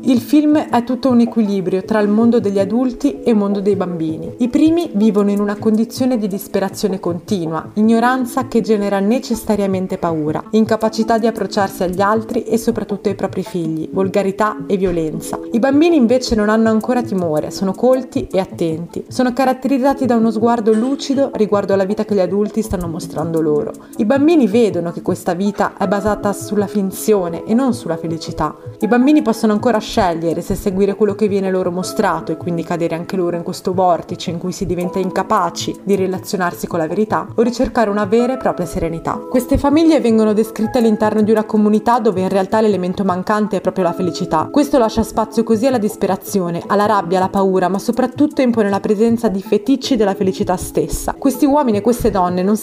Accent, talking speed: native, 185 wpm